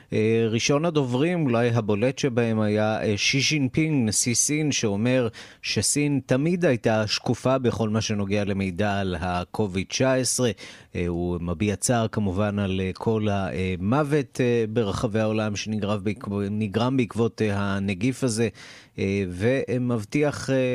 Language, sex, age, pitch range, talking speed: Hebrew, male, 30-49, 100-125 Hz, 100 wpm